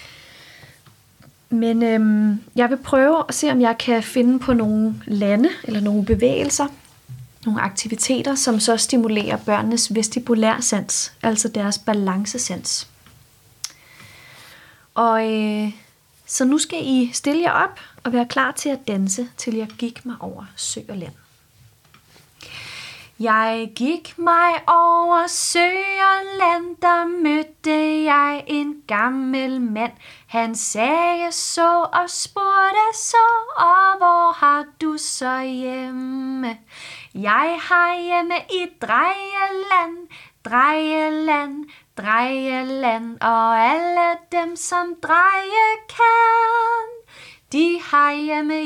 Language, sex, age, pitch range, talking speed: Danish, female, 30-49, 230-345 Hz, 105 wpm